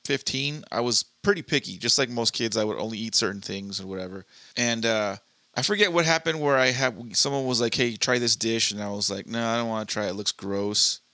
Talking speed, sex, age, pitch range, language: 260 wpm, male, 30-49, 110-130 Hz, English